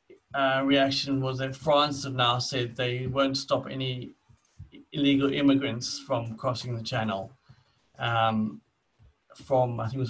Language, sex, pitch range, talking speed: English, male, 115-135 Hz, 145 wpm